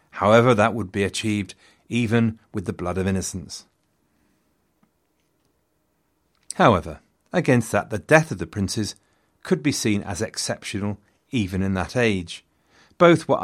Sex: male